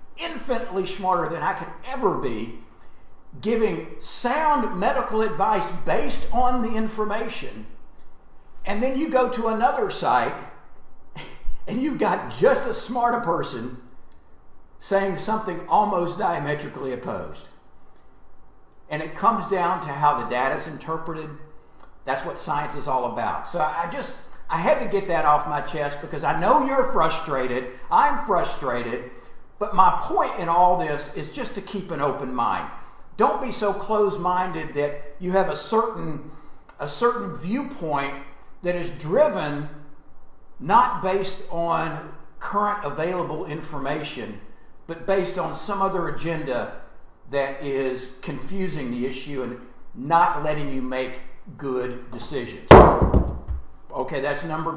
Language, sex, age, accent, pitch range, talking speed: English, male, 50-69, American, 140-210 Hz, 135 wpm